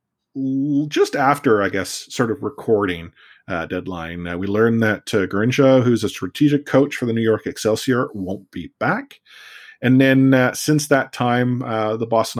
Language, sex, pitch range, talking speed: English, male, 105-140 Hz, 175 wpm